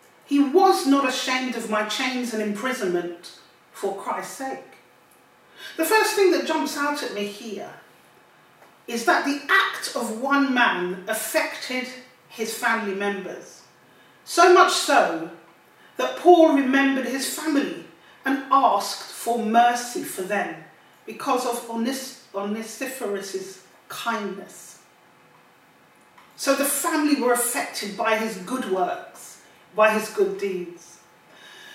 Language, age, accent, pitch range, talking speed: English, 40-59, British, 215-290 Hz, 120 wpm